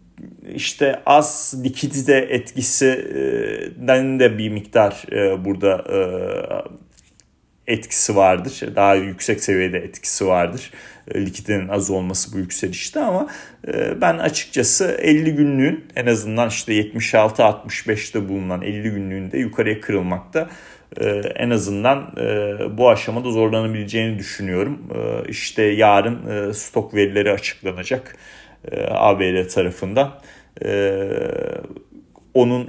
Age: 40-59